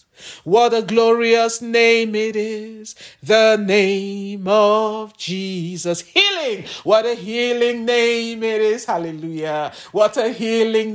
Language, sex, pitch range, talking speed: English, male, 175-230 Hz, 115 wpm